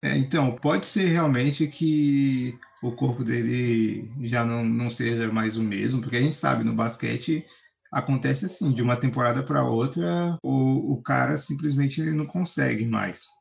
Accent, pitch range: Brazilian, 115-140 Hz